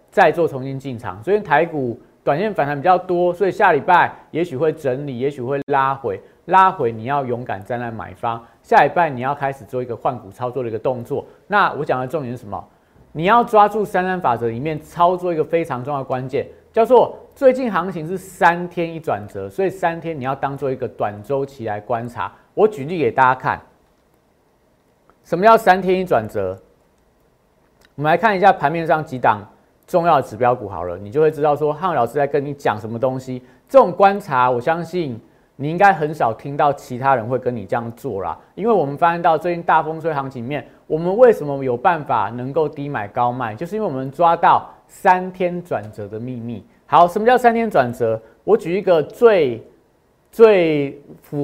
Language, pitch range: Chinese, 125-175 Hz